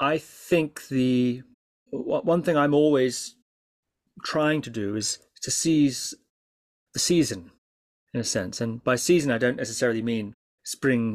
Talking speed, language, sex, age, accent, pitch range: 140 wpm, English, male, 30-49, British, 115-150 Hz